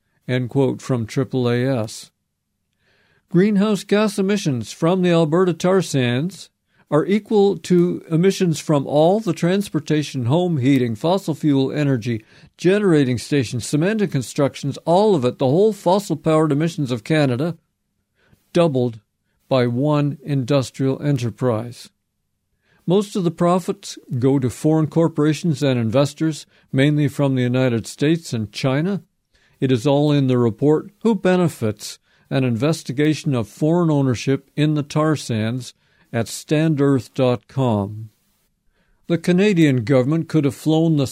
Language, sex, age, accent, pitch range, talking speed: English, male, 50-69, American, 130-160 Hz, 125 wpm